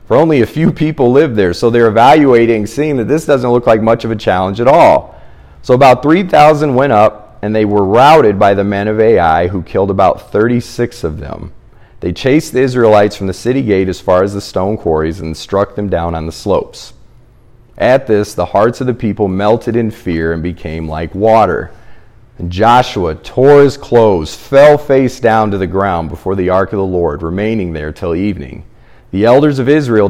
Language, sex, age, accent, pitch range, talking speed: English, male, 40-59, American, 95-120 Hz, 205 wpm